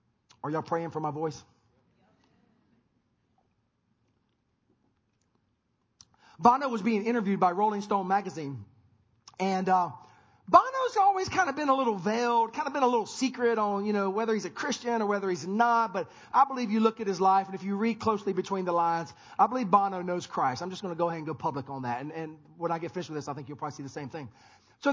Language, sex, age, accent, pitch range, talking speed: English, male, 40-59, American, 170-235 Hz, 215 wpm